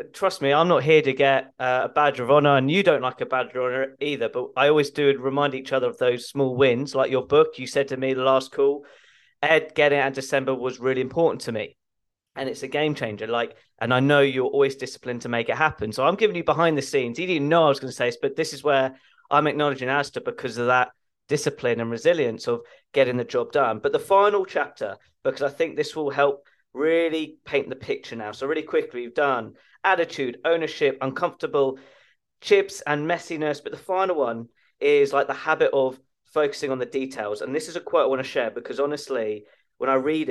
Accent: British